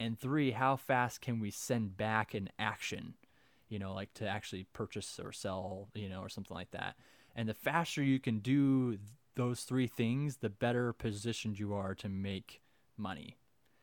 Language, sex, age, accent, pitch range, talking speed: English, male, 20-39, American, 110-135 Hz, 180 wpm